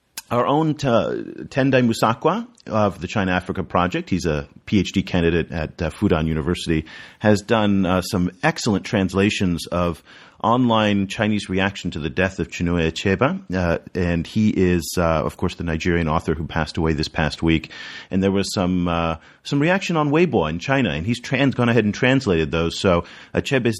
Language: English